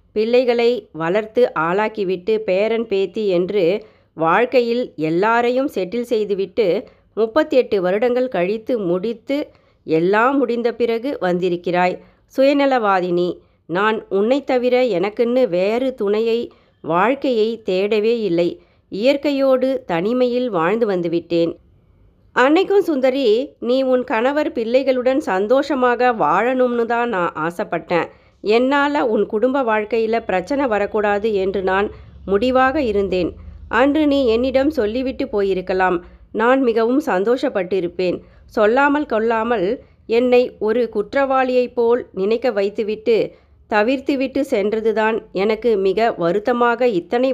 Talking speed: 95 wpm